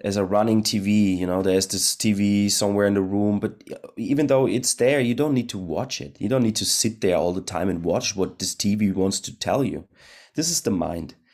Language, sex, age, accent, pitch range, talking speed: English, male, 30-49, German, 100-130 Hz, 245 wpm